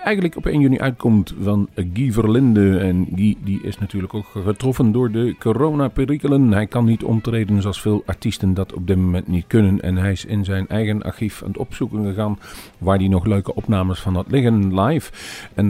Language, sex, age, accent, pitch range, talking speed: Dutch, male, 40-59, Dutch, 95-125 Hz, 205 wpm